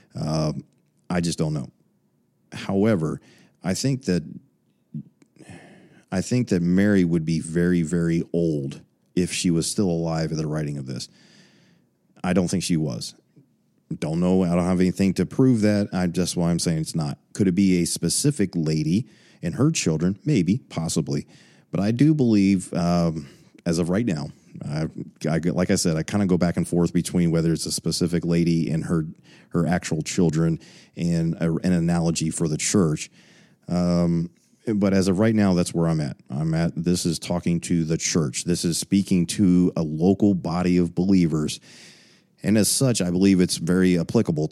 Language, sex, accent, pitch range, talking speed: English, male, American, 85-95 Hz, 180 wpm